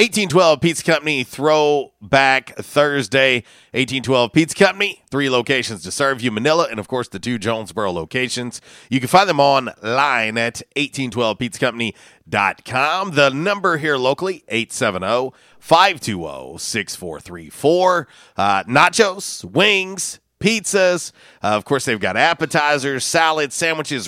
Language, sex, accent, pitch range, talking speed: English, male, American, 115-155 Hz, 110 wpm